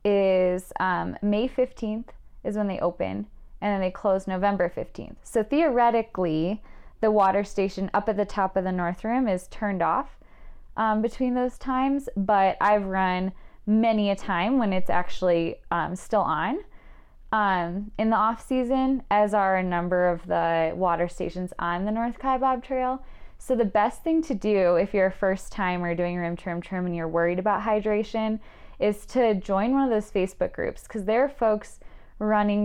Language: English